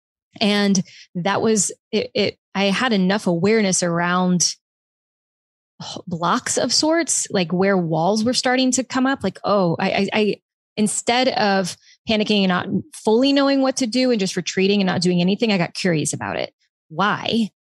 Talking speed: 165 wpm